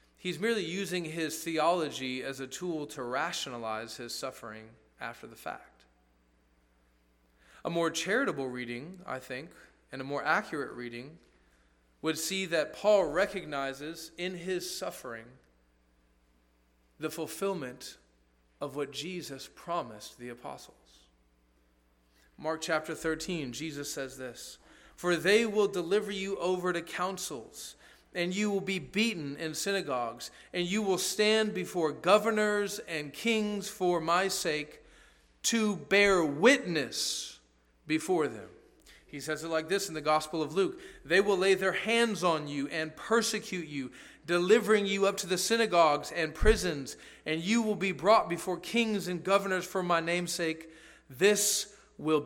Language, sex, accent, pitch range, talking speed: English, male, American, 130-195 Hz, 140 wpm